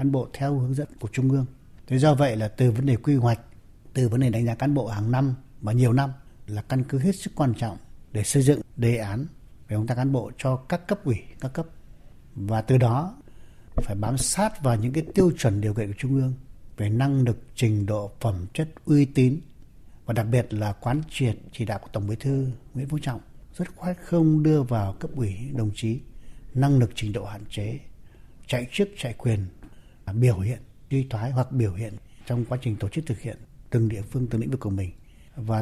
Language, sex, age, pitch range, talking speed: Vietnamese, male, 60-79, 110-135 Hz, 225 wpm